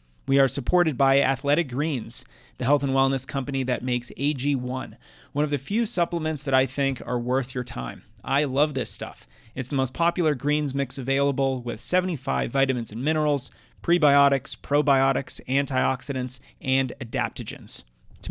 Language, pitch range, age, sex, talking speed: English, 125-145 Hz, 30-49, male, 155 wpm